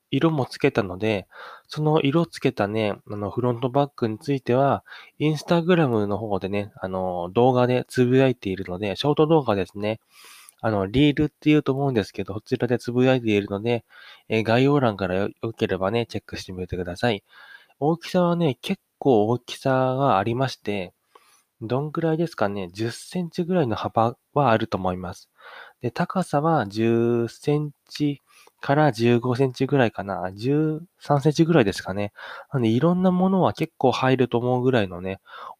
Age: 20-39